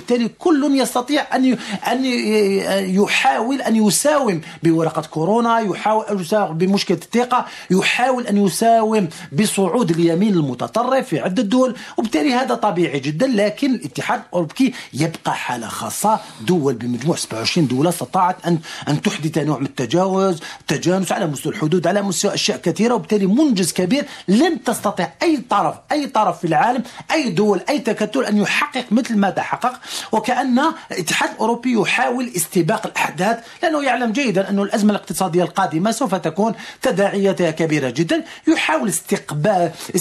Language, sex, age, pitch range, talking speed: Arabic, male, 40-59, 185-250 Hz, 140 wpm